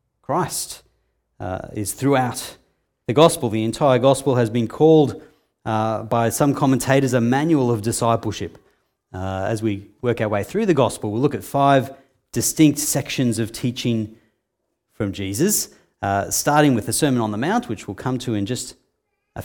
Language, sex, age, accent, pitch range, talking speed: English, male, 30-49, Australian, 100-130 Hz, 165 wpm